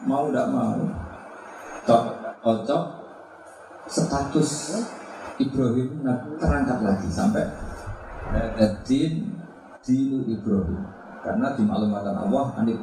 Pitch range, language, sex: 85-100 Hz, Indonesian, male